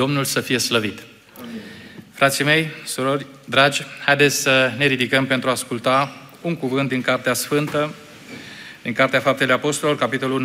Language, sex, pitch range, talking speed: Romanian, male, 130-170 Hz, 145 wpm